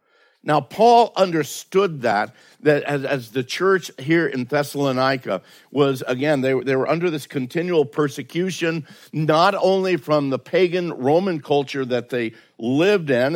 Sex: male